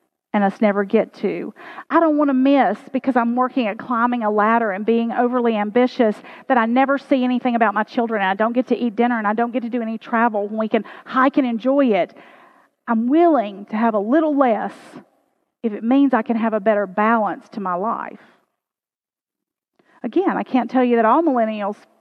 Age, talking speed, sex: 40-59, 215 wpm, female